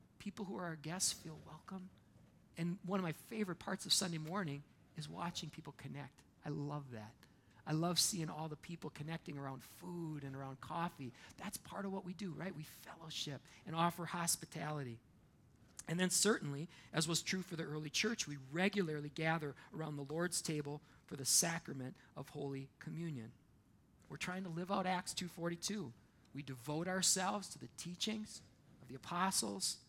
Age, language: 40-59, English